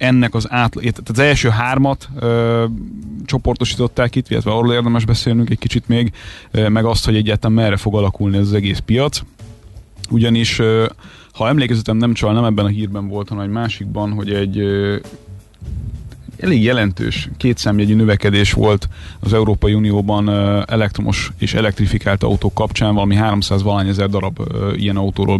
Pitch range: 100-115 Hz